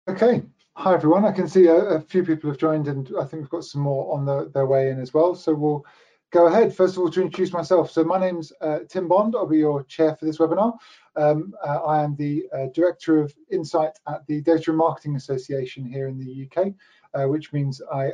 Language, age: English, 30-49